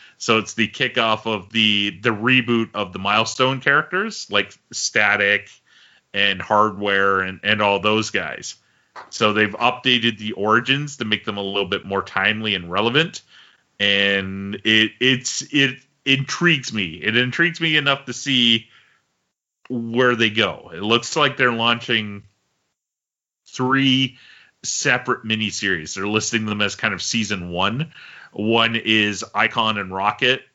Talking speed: 140 wpm